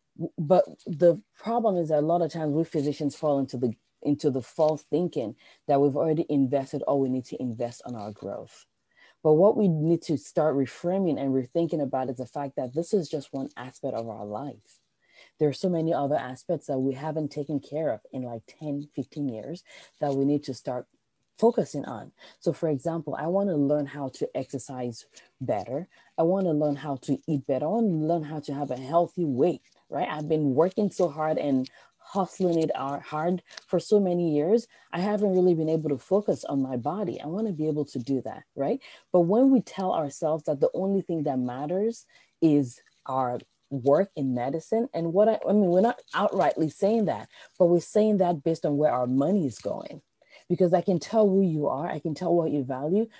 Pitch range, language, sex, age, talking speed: 135-180 Hz, English, female, 20-39, 215 wpm